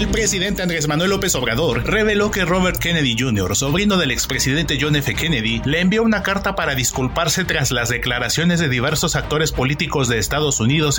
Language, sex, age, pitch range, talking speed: Spanish, male, 30-49, 125-165 Hz, 180 wpm